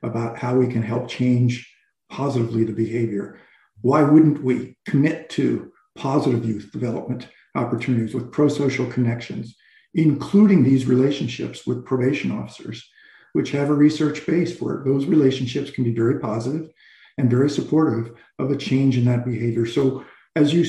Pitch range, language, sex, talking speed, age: 125-155 Hz, English, male, 150 wpm, 50-69